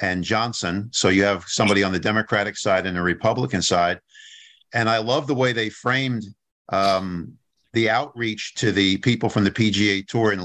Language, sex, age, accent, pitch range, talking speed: English, male, 50-69, American, 100-125 Hz, 185 wpm